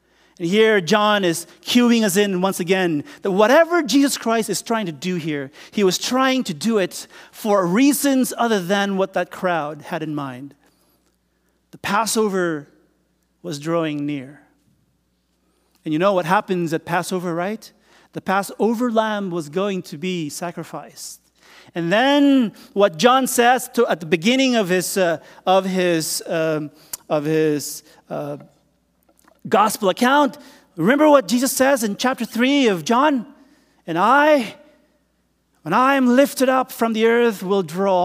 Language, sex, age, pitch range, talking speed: English, male, 40-59, 165-245 Hz, 150 wpm